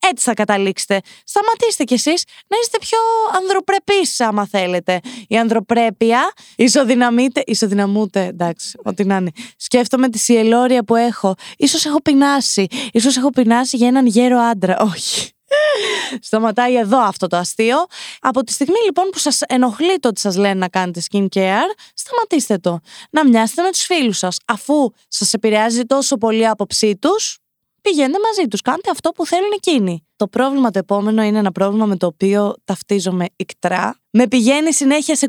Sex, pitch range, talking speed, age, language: female, 195-280 Hz, 160 wpm, 20-39, Greek